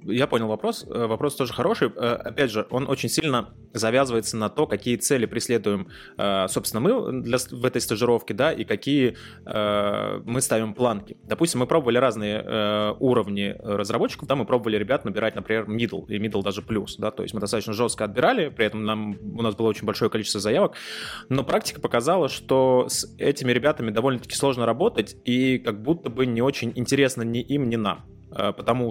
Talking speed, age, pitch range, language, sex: 175 wpm, 20-39, 105-130 Hz, Russian, male